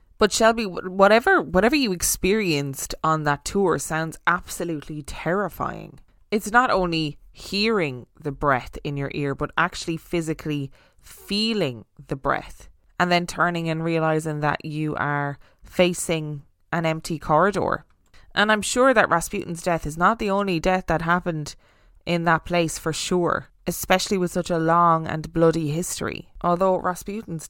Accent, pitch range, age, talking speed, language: Irish, 145-180 Hz, 20-39, 145 wpm, English